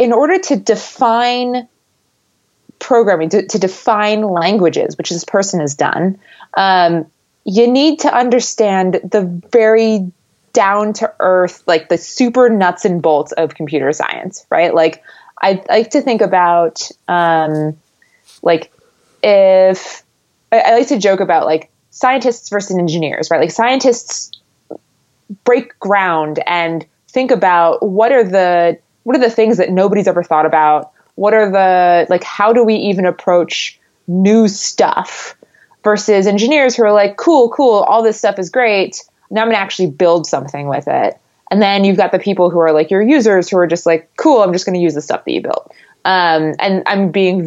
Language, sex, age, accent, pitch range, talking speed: English, female, 20-39, American, 165-220 Hz, 170 wpm